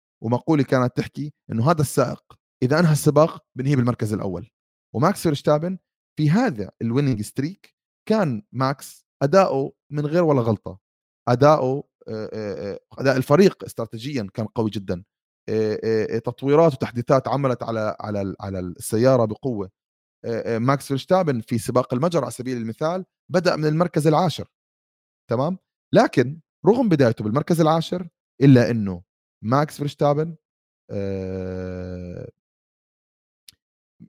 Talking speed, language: 105 wpm, Arabic